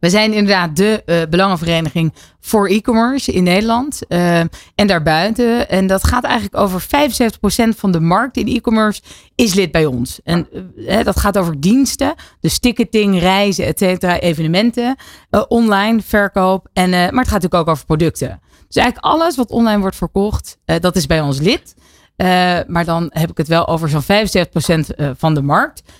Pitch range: 160-205 Hz